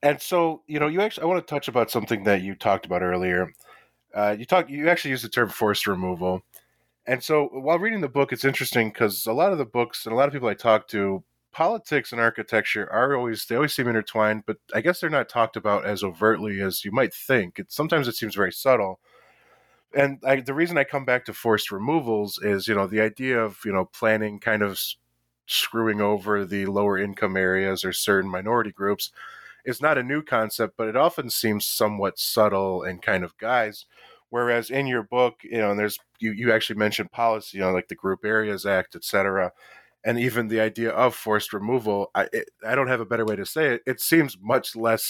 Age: 20-39